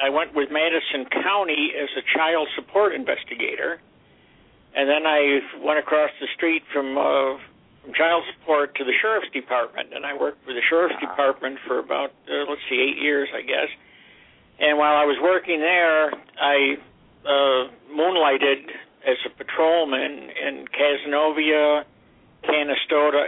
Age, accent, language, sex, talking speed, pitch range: 60-79, American, English, male, 145 wpm, 135-150 Hz